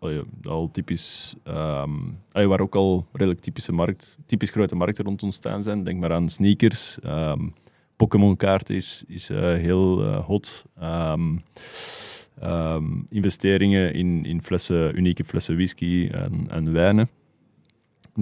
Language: Dutch